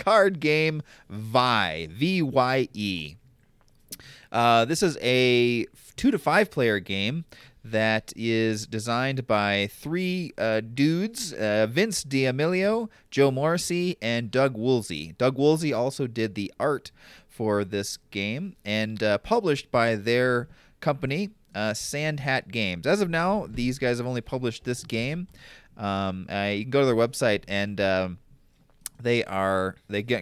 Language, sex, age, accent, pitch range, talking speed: English, male, 30-49, American, 105-140 Hz, 145 wpm